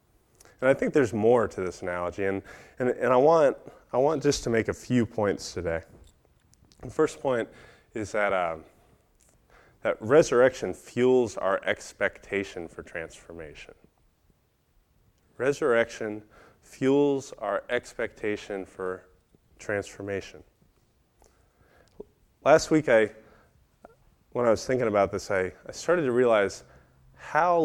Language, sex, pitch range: English, male, 95-125 Hz